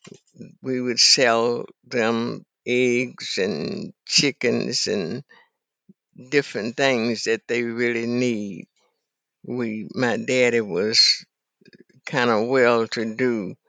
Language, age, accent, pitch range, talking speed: English, 60-79, American, 115-135 Hz, 95 wpm